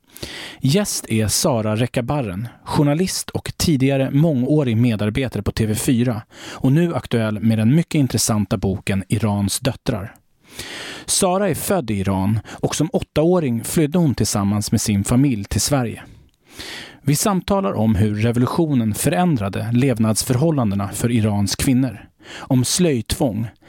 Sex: male